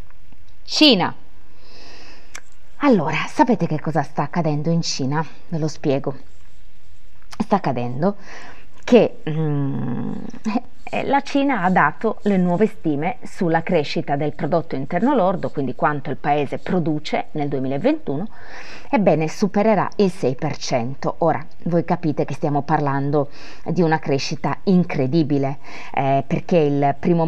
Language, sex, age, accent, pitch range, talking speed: Italian, female, 20-39, native, 145-190 Hz, 120 wpm